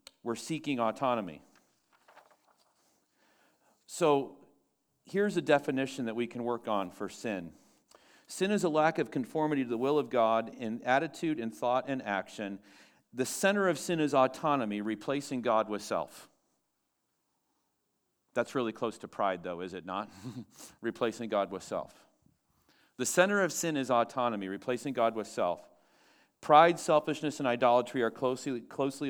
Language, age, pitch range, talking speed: English, 40-59, 115-145 Hz, 145 wpm